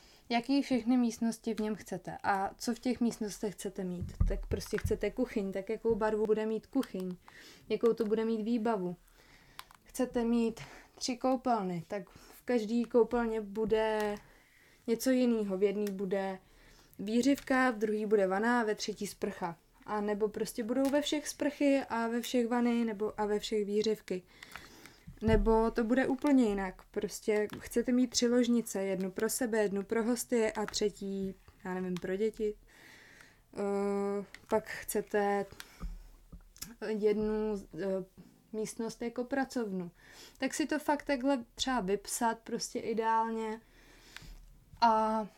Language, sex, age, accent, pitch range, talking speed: Czech, female, 20-39, native, 205-240 Hz, 140 wpm